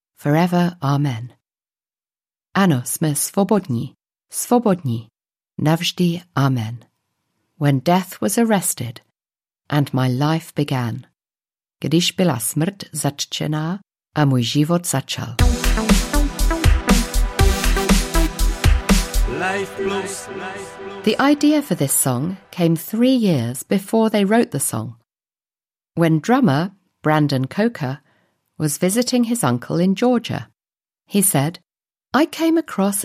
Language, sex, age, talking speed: Czech, female, 50-69, 95 wpm